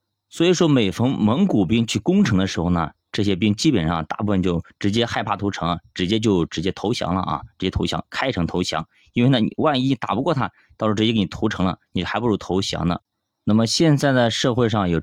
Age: 30-49